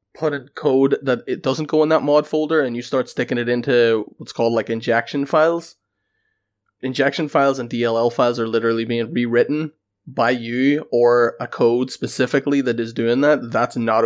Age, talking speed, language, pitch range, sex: 20-39, 185 wpm, English, 115-135 Hz, male